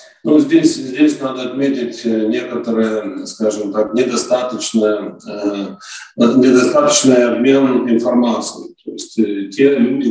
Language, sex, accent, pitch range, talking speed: Russian, male, native, 110-125 Hz, 95 wpm